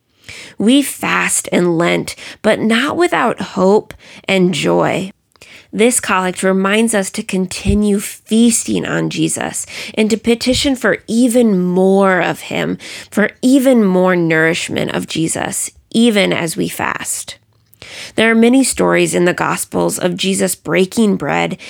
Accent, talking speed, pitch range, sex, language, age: American, 135 wpm, 170-225 Hz, female, English, 20-39